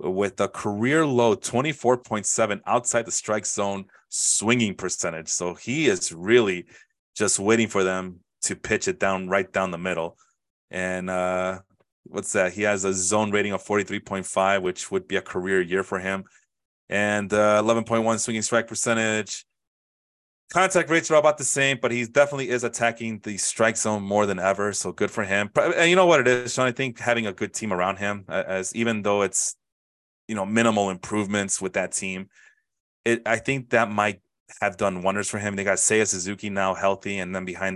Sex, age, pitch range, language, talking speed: male, 30-49, 95-115 Hz, English, 190 wpm